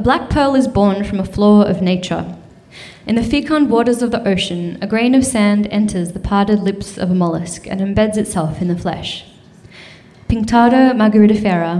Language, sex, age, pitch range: English, female, 10-29, 185-225 Hz